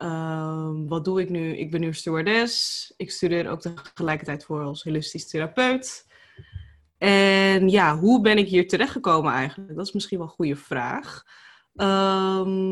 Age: 20-39